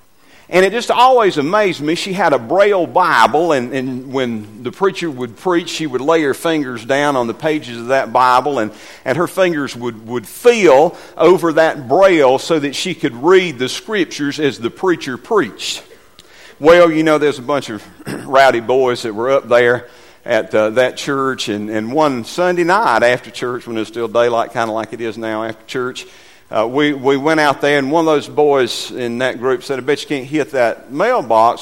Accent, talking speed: American, 210 wpm